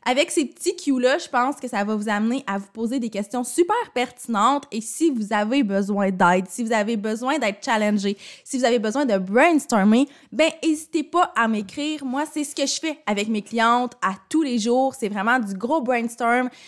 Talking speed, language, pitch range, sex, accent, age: 215 wpm, French, 210-275 Hz, female, Canadian, 20-39